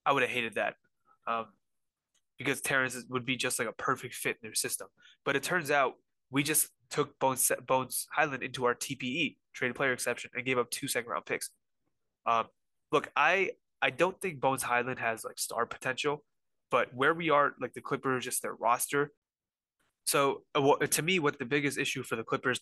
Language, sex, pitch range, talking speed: English, male, 120-140 Hz, 195 wpm